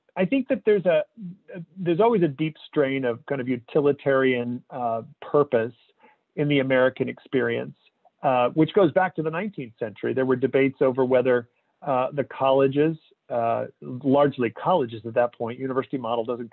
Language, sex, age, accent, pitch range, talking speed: English, male, 40-59, American, 125-165 Hz, 165 wpm